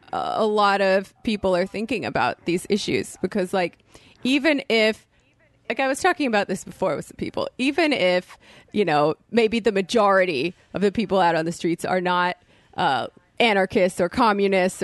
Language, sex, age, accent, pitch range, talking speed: English, female, 30-49, American, 180-215 Hz, 175 wpm